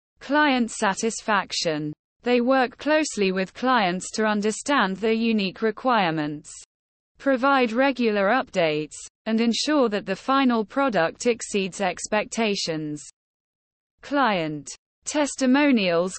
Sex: female